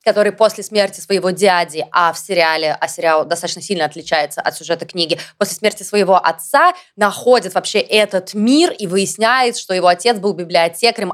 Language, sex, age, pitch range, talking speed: Russian, female, 20-39, 180-220 Hz, 165 wpm